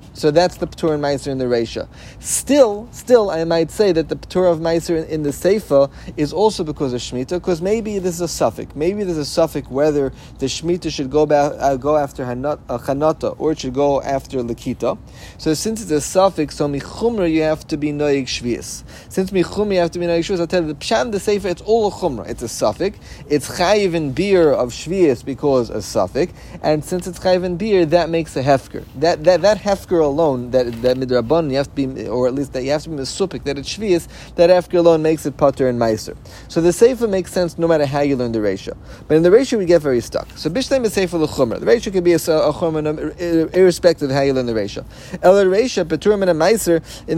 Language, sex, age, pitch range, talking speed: English, male, 30-49, 140-180 Hz, 240 wpm